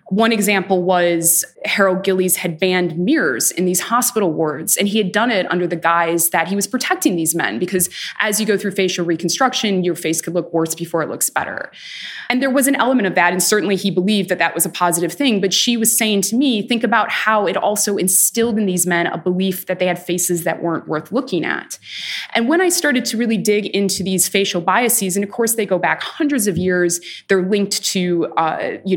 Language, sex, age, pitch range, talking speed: English, female, 20-39, 175-220 Hz, 230 wpm